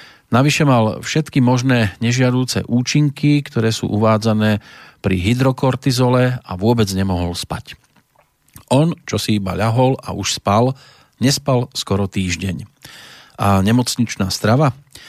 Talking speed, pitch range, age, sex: 115 wpm, 100-130 Hz, 40-59, male